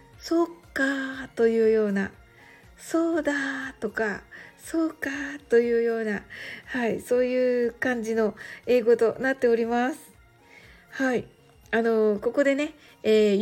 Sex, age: female, 60-79